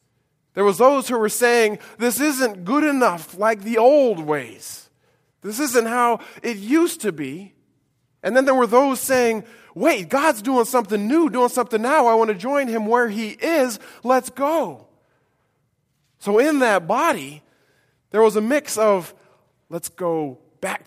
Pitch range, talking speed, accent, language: 145-235 Hz, 165 wpm, American, English